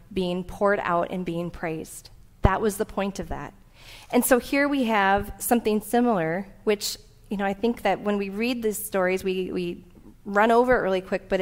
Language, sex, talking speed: English, female, 200 wpm